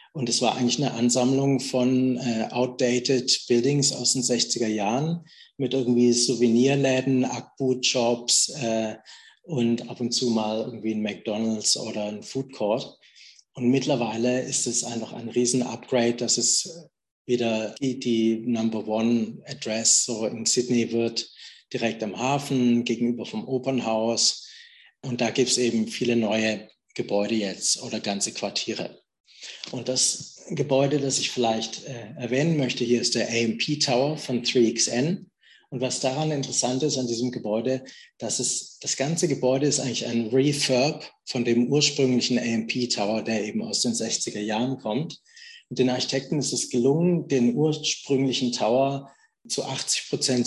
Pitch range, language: 115-135 Hz, German